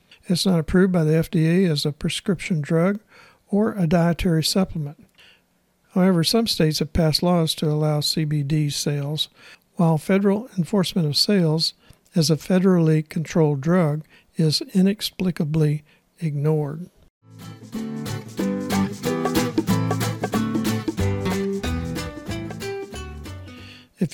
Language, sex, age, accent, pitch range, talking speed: English, male, 60-79, American, 150-180 Hz, 95 wpm